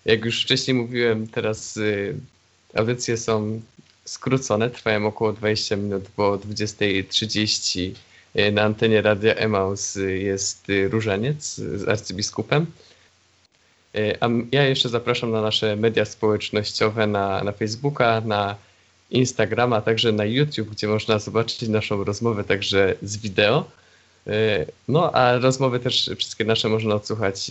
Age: 20-39